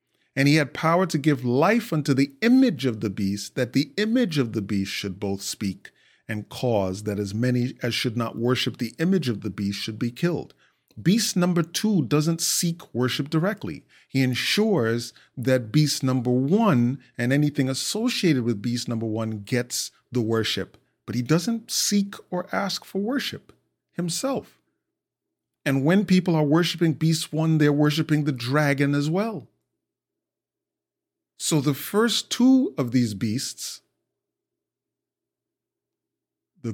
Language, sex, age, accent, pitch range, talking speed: English, male, 40-59, American, 120-165 Hz, 150 wpm